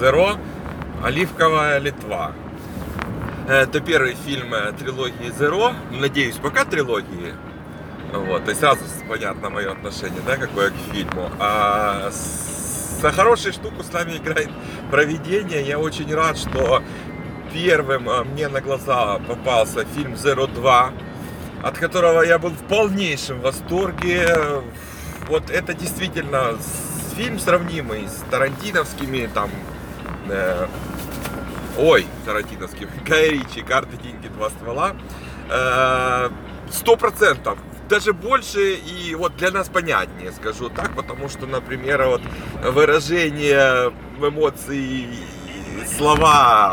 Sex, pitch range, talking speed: male, 130-175 Hz, 105 wpm